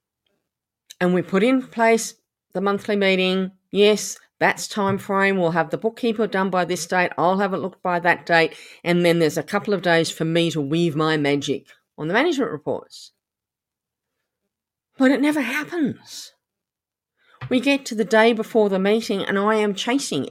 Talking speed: 175 wpm